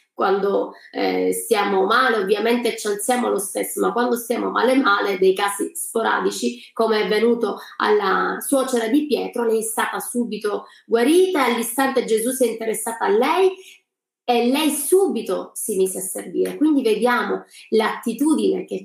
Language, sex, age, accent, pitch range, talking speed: Italian, female, 30-49, native, 215-260 Hz, 150 wpm